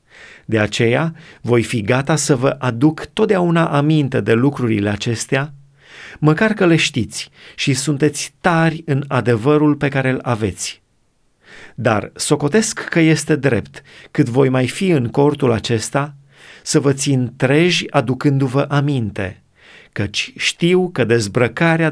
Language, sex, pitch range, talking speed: Romanian, male, 125-155 Hz, 130 wpm